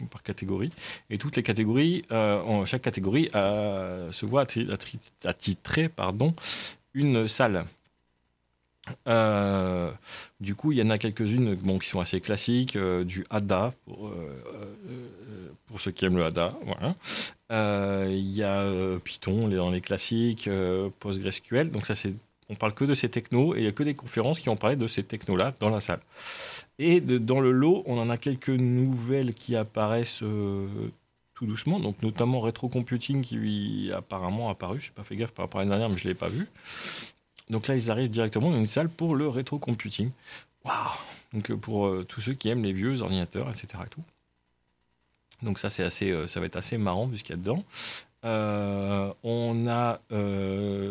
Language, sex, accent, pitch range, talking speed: French, male, French, 95-125 Hz, 200 wpm